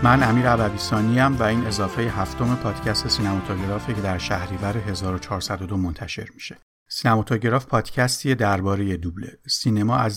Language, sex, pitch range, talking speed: Persian, male, 100-125 Hz, 135 wpm